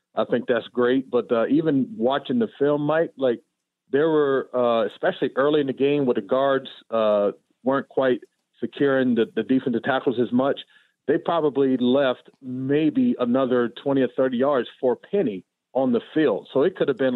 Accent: American